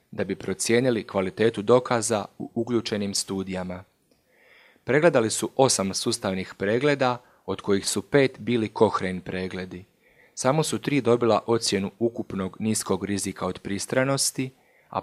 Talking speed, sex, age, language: 125 wpm, male, 30-49, Croatian